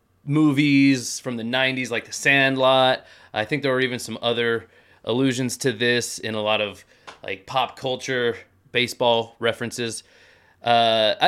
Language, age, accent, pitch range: English, 20-39, American, 110-140 Hz